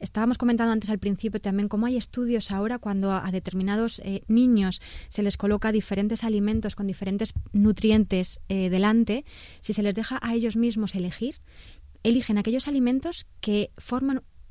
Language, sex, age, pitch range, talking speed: Spanish, female, 20-39, 200-240 Hz, 160 wpm